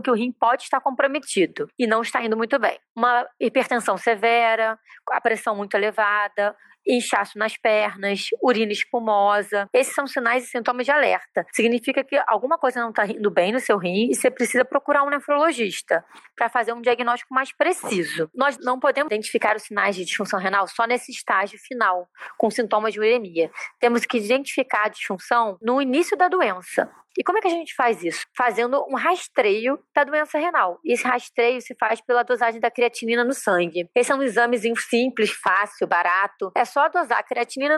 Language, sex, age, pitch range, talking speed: Portuguese, female, 20-39, 220-270 Hz, 185 wpm